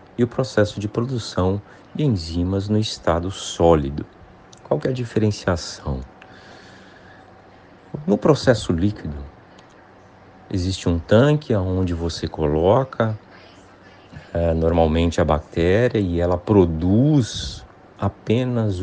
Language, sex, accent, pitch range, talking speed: Portuguese, male, Brazilian, 85-105 Hz, 100 wpm